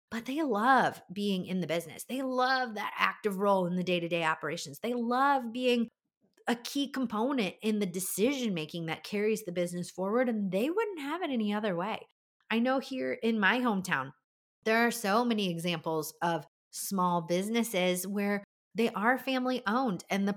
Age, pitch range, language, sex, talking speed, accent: 30-49, 175-225 Hz, English, female, 175 wpm, American